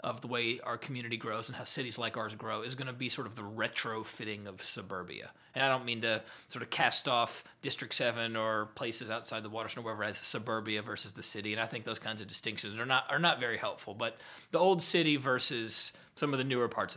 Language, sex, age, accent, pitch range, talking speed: English, male, 30-49, American, 115-140 Hz, 245 wpm